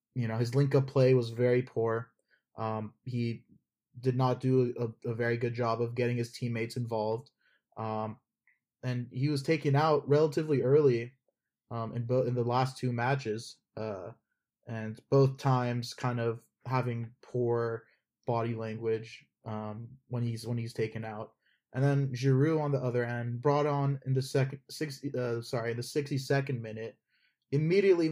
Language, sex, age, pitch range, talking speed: English, male, 20-39, 115-135 Hz, 165 wpm